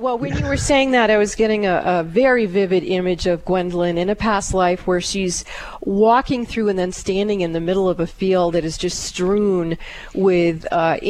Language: English